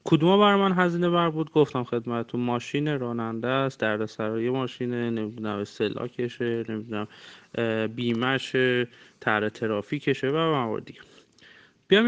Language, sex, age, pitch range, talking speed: Persian, male, 30-49, 120-170 Hz, 135 wpm